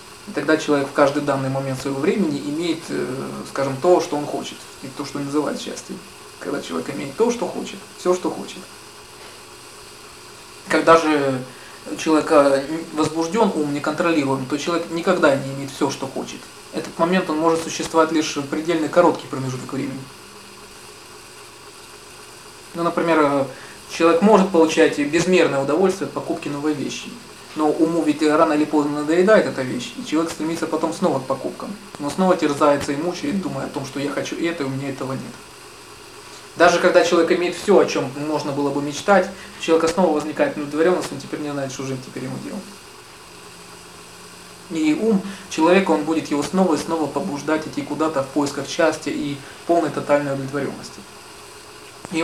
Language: Russian